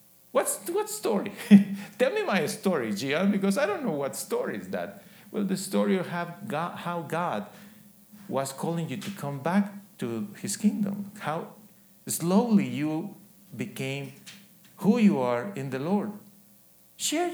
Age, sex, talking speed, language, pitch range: 50-69, male, 145 wpm, English, 175-205 Hz